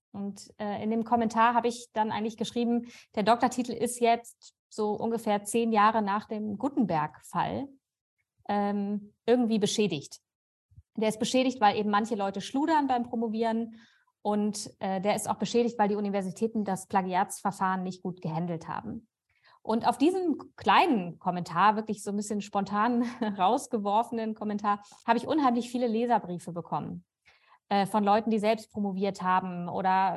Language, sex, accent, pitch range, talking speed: German, female, German, 200-235 Hz, 150 wpm